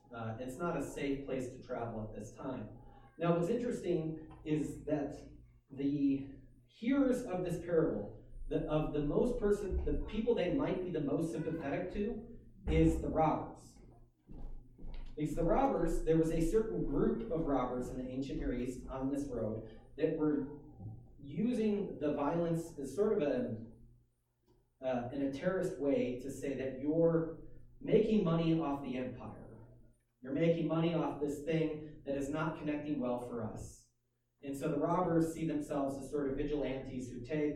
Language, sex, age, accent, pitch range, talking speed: English, male, 30-49, American, 120-160 Hz, 165 wpm